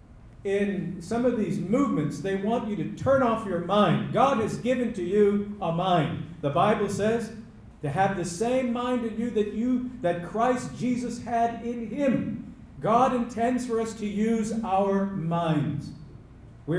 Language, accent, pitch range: English, American, 130-205 Hz